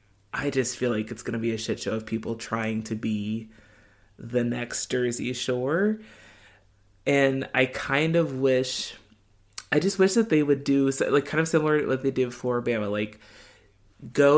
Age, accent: 20-39, American